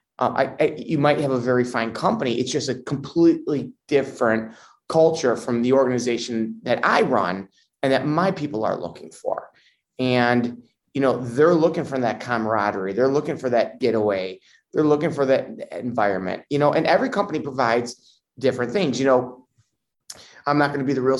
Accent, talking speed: American, 180 wpm